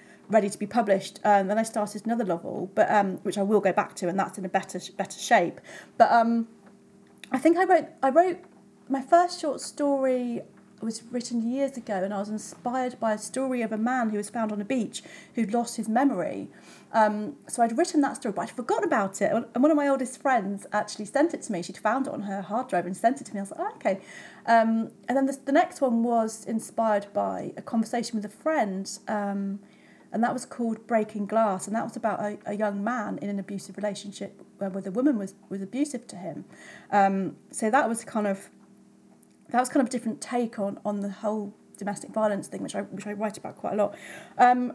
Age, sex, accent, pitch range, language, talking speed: 40-59, female, British, 205-250 Hz, English, 230 wpm